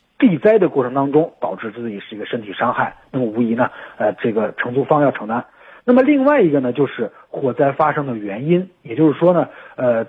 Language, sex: Chinese, male